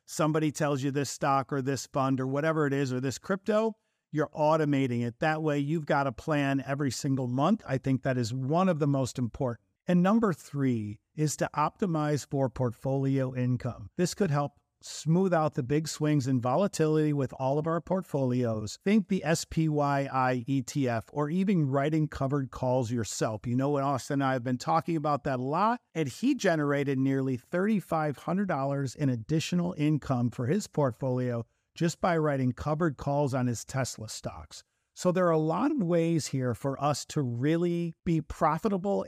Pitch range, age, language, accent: 130-165 Hz, 50-69, English, American